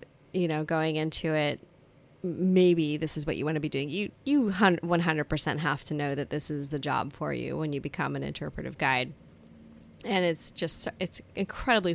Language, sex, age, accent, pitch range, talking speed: English, female, 20-39, American, 155-185 Hz, 200 wpm